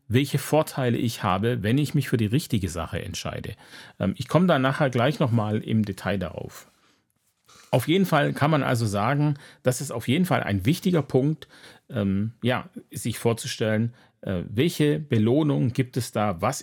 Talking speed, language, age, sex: 160 wpm, German, 40-59, male